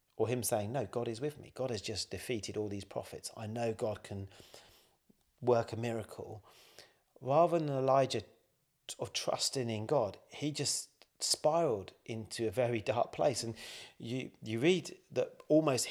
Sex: male